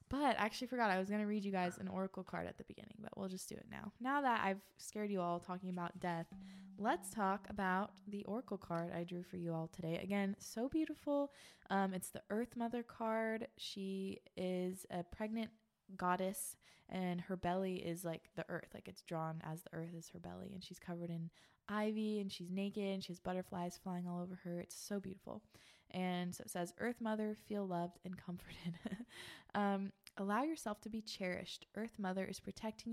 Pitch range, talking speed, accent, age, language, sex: 180-215 Hz, 205 wpm, American, 20-39, English, female